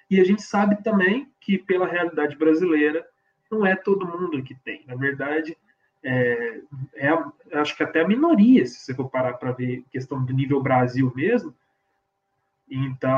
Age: 20-39